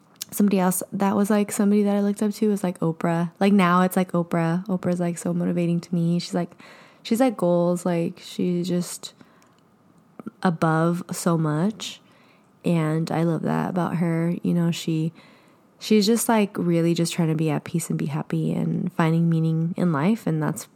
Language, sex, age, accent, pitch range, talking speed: English, female, 20-39, American, 170-200 Hz, 190 wpm